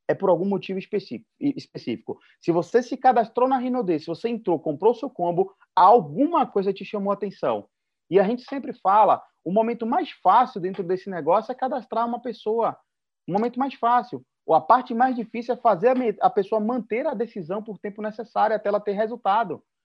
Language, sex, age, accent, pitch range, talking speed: Portuguese, male, 30-49, Brazilian, 185-235 Hz, 190 wpm